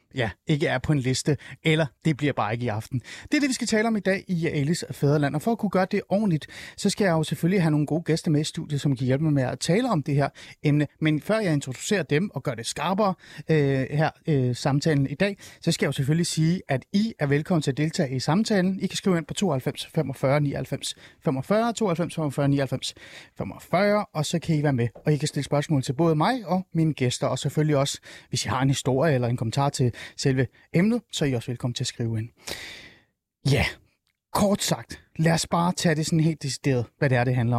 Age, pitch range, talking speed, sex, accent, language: 30-49, 135-175 Hz, 245 wpm, male, native, Danish